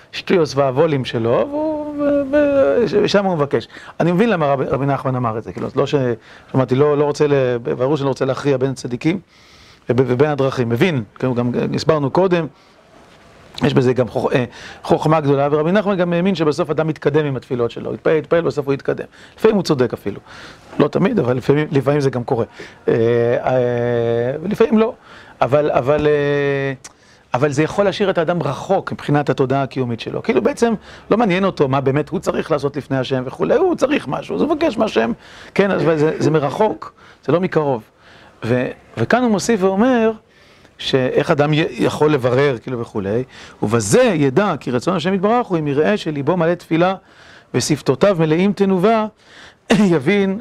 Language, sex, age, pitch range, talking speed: Hebrew, male, 40-59, 135-185 Hz, 170 wpm